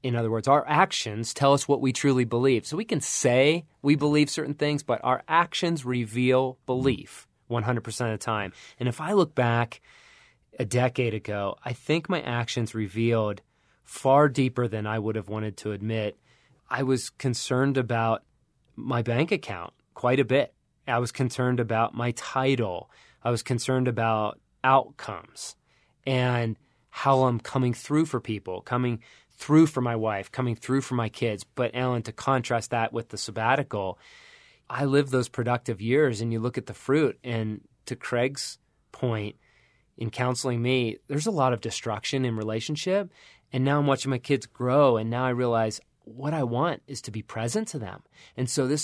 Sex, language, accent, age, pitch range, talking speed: male, English, American, 20-39, 115-140 Hz, 175 wpm